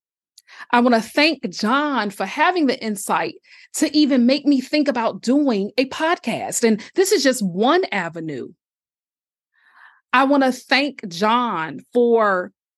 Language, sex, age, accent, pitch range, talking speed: English, female, 30-49, American, 200-265 Hz, 140 wpm